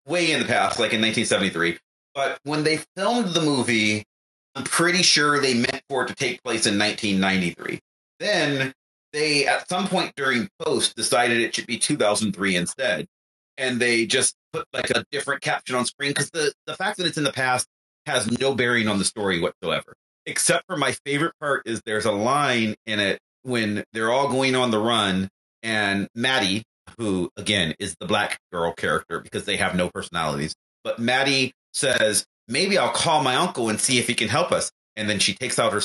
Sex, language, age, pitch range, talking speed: male, English, 30-49, 105-150 Hz, 195 wpm